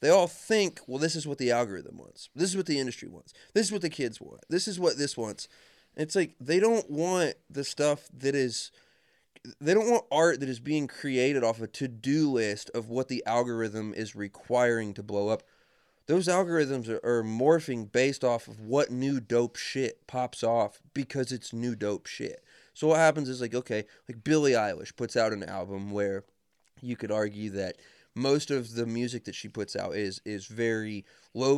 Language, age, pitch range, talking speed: English, 30-49, 110-145 Hz, 200 wpm